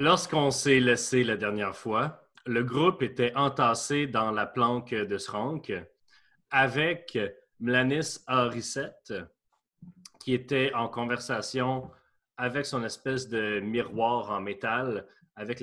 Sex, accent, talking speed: male, Canadian, 115 wpm